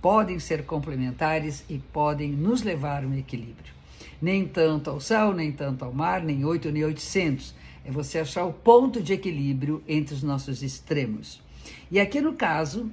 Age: 50-69